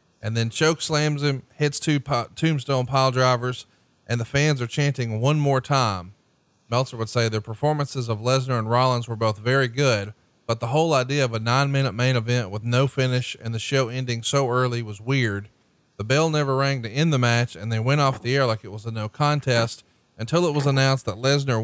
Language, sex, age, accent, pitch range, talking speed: English, male, 30-49, American, 120-150 Hz, 215 wpm